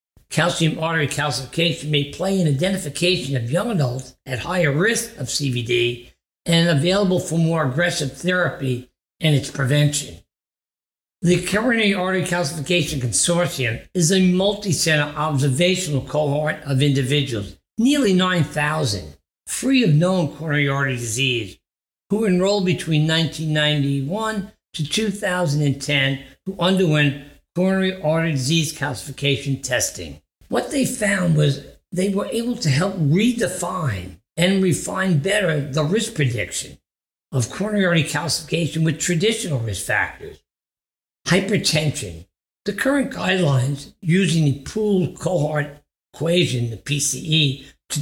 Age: 60-79